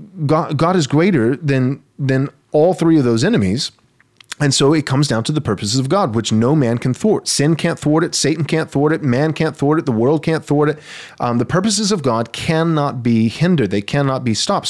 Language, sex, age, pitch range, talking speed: English, male, 30-49, 120-155 Hz, 225 wpm